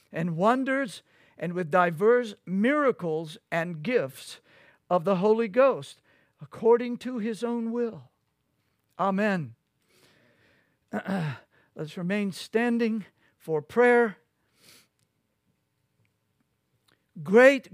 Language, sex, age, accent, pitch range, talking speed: English, male, 60-79, American, 165-225 Hz, 80 wpm